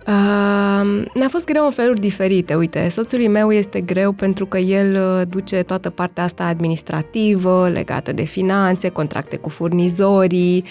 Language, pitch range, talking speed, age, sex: Romanian, 165-195 Hz, 145 wpm, 20-39, female